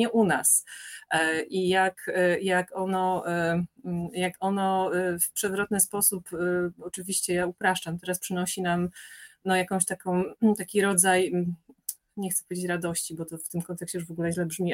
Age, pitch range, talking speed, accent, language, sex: 30-49, 180-215 Hz, 140 wpm, native, Polish, female